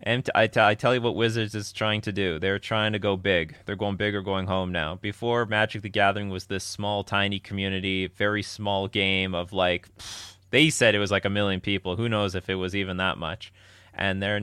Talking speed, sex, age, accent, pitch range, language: 225 wpm, male, 30-49, American, 95-110 Hz, English